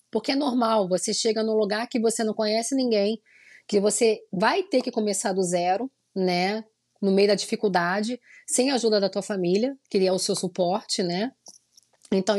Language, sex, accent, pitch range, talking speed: Portuguese, female, Brazilian, 200-270 Hz, 185 wpm